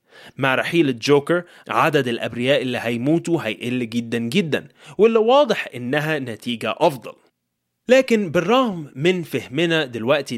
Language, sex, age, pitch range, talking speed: Arabic, male, 20-39, 130-185 Hz, 115 wpm